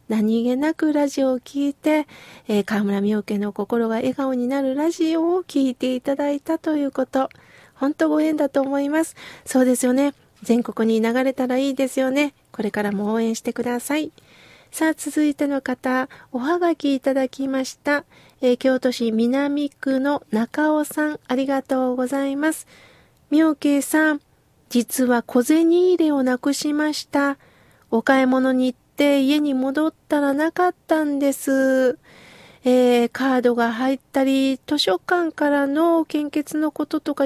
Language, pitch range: Japanese, 255-305 Hz